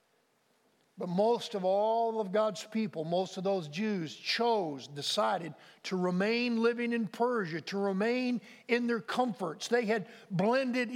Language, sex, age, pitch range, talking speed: English, male, 50-69, 195-240 Hz, 140 wpm